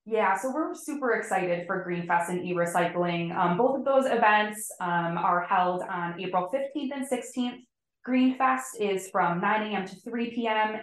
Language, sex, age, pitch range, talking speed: English, female, 20-39, 175-235 Hz, 175 wpm